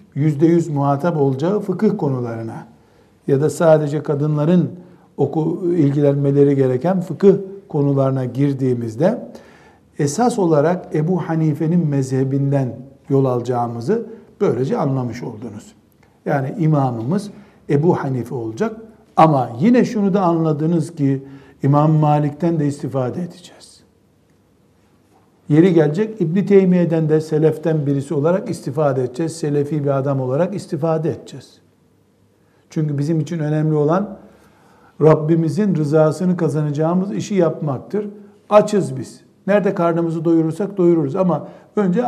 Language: Turkish